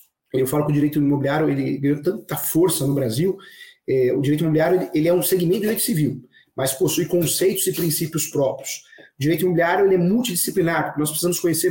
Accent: Brazilian